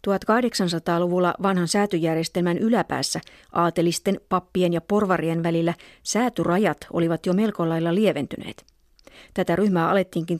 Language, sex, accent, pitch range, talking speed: Finnish, female, native, 170-195 Hz, 105 wpm